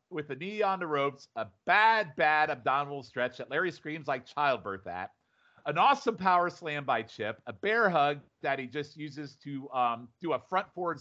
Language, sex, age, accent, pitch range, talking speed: English, male, 40-59, American, 130-175 Hz, 195 wpm